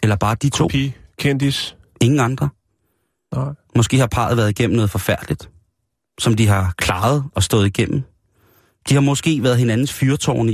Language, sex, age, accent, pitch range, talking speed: Danish, male, 30-49, native, 105-135 Hz, 155 wpm